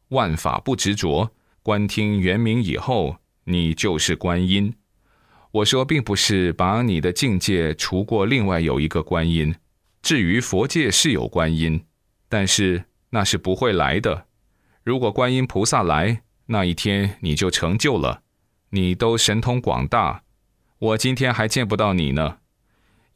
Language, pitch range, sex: Chinese, 90-115 Hz, male